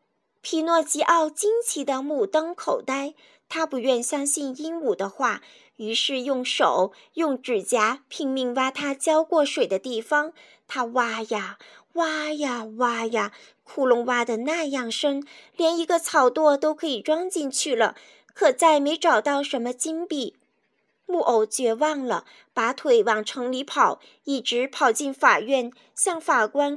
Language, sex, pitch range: Chinese, female, 250-325 Hz